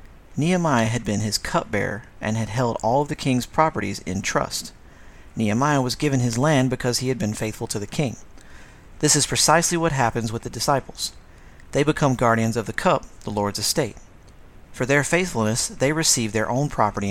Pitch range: 105-135 Hz